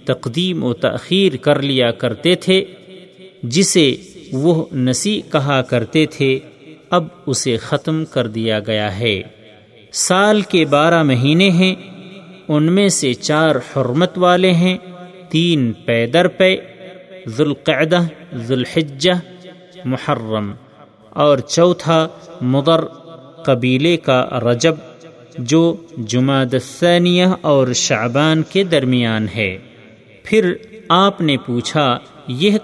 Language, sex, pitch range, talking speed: Urdu, male, 125-180 Hz, 105 wpm